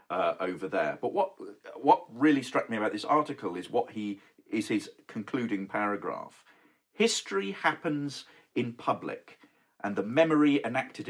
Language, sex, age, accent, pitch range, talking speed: English, male, 50-69, British, 105-150 Hz, 145 wpm